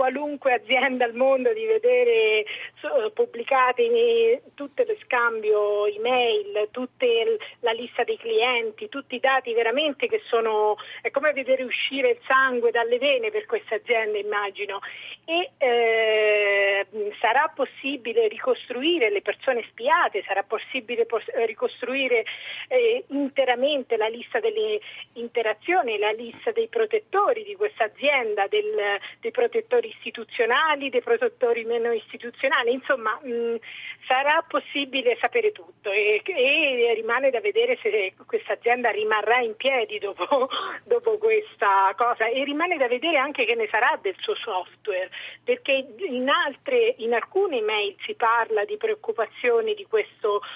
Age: 40-59